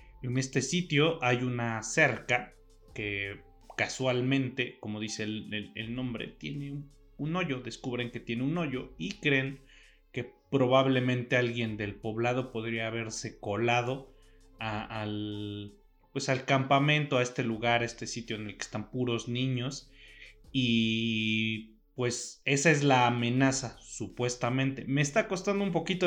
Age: 30-49